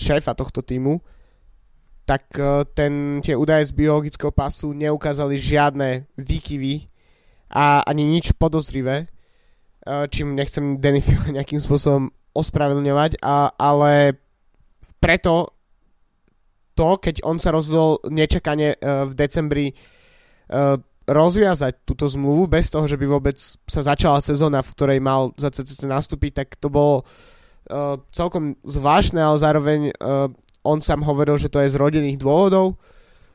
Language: Slovak